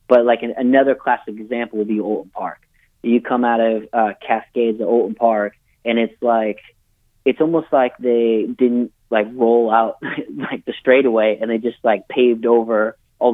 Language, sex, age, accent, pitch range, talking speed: English, male, 30-49, American, 115-130 Hz, 175 wpm